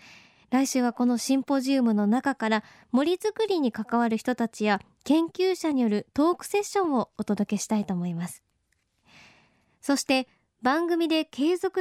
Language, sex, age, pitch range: Japanese, male, 20-39, 240-340 Hz